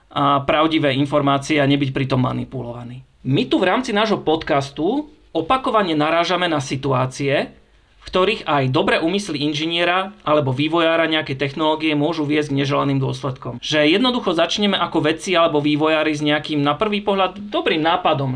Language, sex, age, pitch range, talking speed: Slovak, male, 40-59, 140-165 Hz, 145 wpm